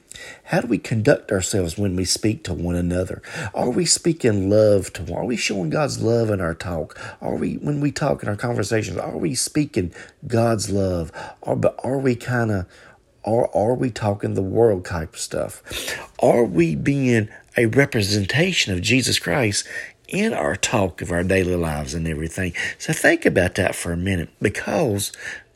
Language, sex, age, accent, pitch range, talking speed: English, male, 40-59, American, 100-165 Hz, 185 wpm